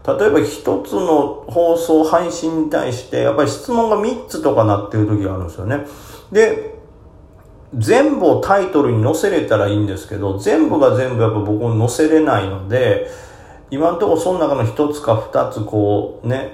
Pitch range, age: 105-160 Hz, 40-59